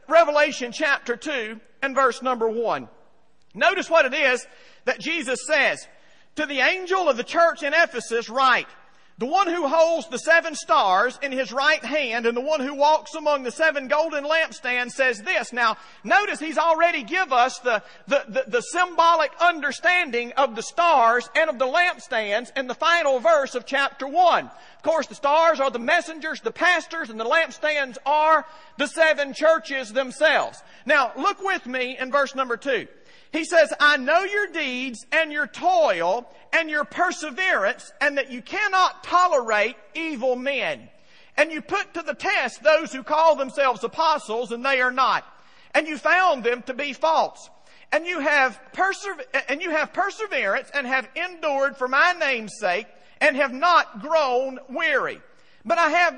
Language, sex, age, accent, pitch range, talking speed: English, male, 40-59, American, 260-330 Hz, 170 wpm